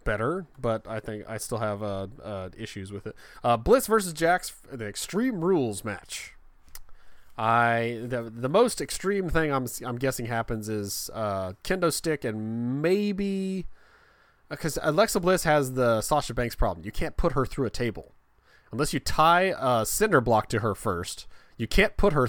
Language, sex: English, male